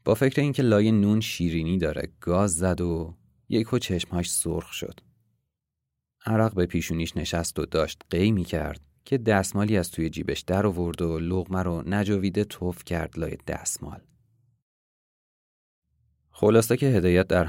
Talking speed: 145 wpm